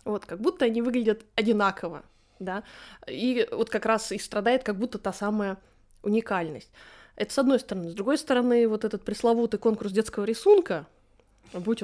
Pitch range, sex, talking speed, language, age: 185-245 Hz, female, 160 wpm, Russian, 20-39